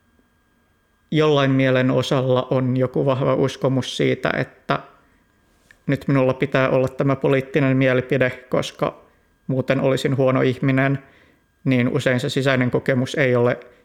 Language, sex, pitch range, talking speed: Finnish, male, 120-140 Hz, 120 wpm